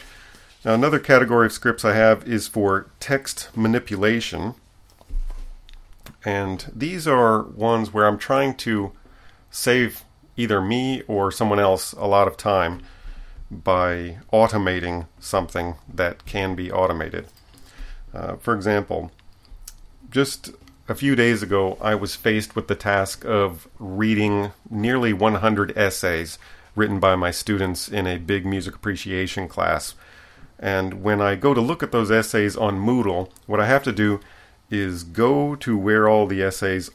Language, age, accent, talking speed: English, 40-59, American, 140 wpm